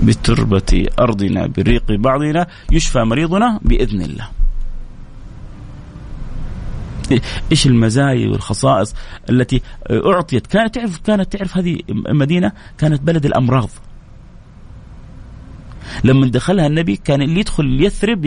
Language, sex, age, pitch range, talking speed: Arabic, male, 30-49, 110-180 Hz, 95 wpm